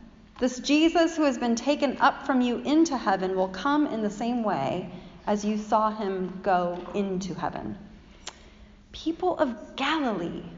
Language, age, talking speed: English, 30-49, 155 wpm